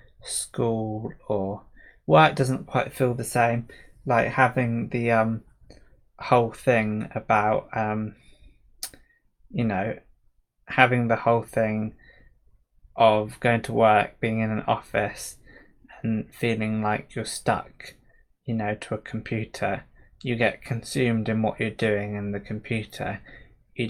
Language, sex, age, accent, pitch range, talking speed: English, male, 20-39, British, 110-125 Hz, 130 wpm